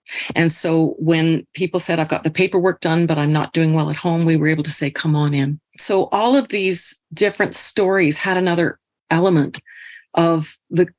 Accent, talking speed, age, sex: American, 195 wpm, 40-59, female